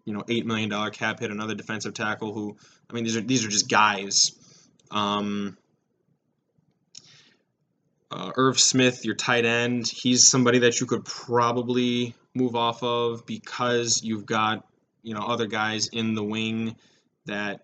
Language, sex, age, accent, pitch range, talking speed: English, male, 10-29, American, 110-125 Hz, 155 wpm